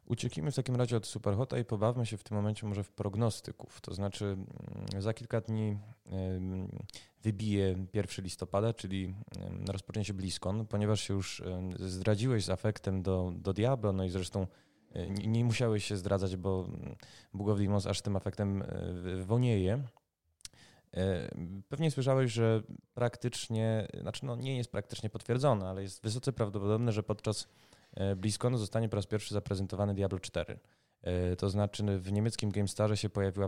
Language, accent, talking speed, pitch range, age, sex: Polish, native, 145 wpm, 95-115 Hz, 20-39, male